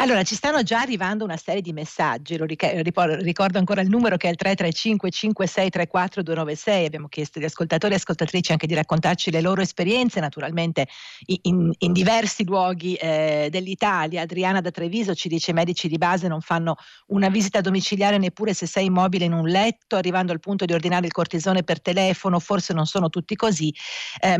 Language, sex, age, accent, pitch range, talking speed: Italian, female, 50-69, native, 165-200 Hz, 190 wpm